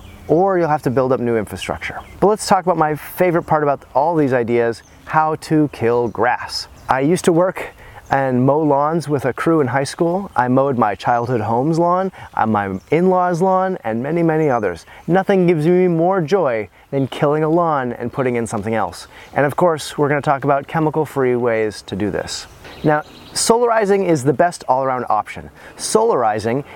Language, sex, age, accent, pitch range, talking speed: English, male, 30-49, American, 125-165 Hz, 190 wpm